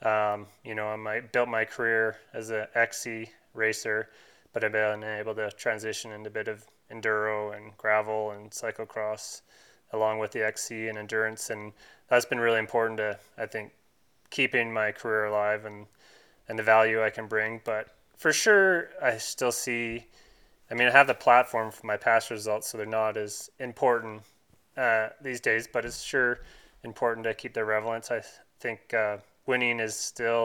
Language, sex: French, male